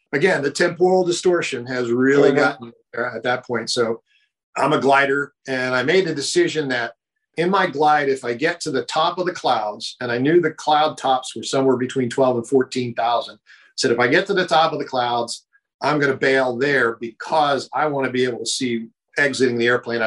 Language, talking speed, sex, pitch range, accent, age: English, 215 wpm, male, 120-150 Hz, American, 50-69